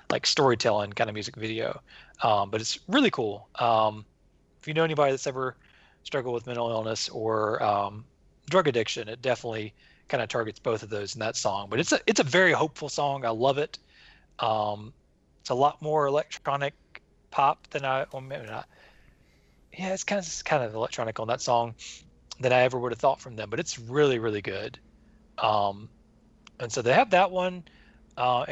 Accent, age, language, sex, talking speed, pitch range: American, 30-49, English, male, 195 wpm, 110-140 Hz